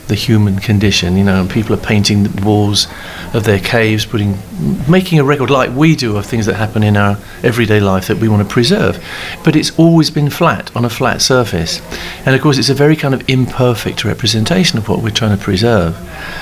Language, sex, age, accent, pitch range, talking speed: English, male, 50-69, British, 105-130 Hz, 210 wpm